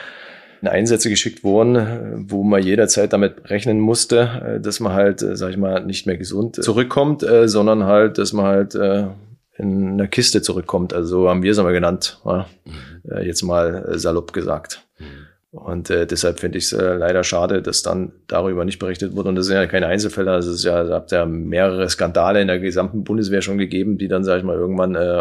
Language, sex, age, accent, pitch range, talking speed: German, male, 30-49, German, 90-100 Hz, 195 wpm